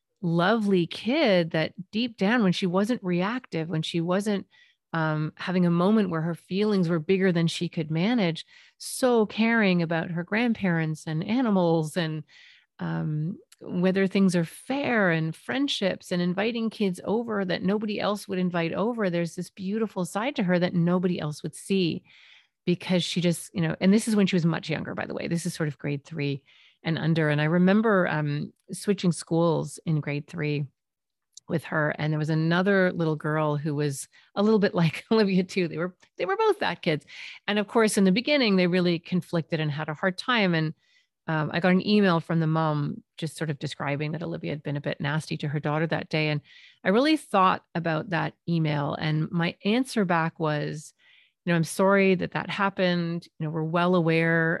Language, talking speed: English, 200 wpm